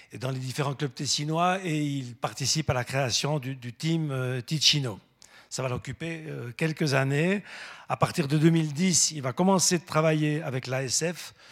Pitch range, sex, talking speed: 130-160 Hz, male, 175 wpm